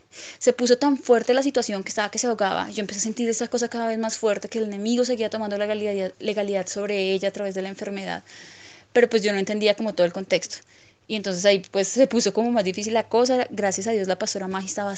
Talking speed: 250 wpm